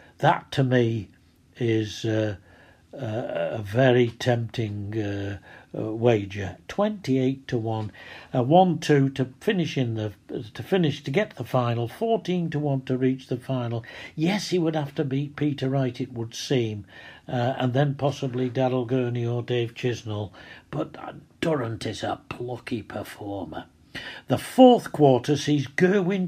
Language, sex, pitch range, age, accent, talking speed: English, male, 105-135 Hz, 60-79, British, 160 wpm